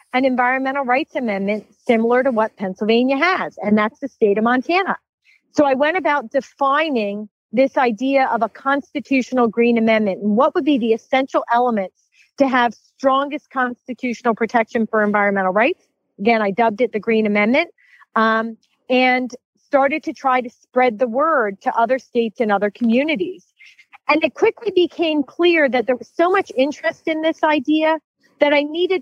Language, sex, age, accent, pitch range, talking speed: English, female, 40-59, American, 235-290 Hz, 170 wpm